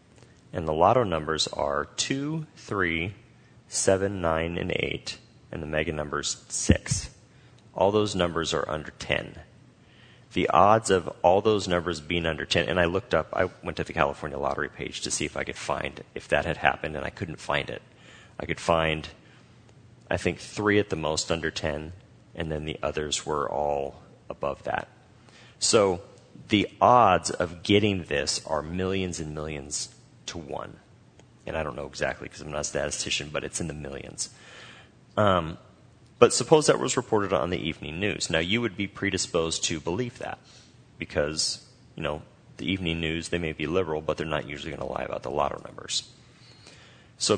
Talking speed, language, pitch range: 180 wpm, English, 80-105 Hz